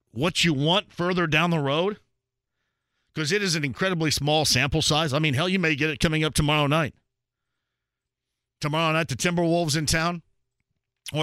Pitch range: 130-175 Hz